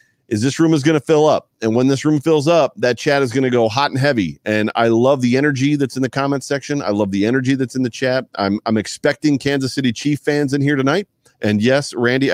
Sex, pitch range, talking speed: male, 100-135 Hz, 255 wpm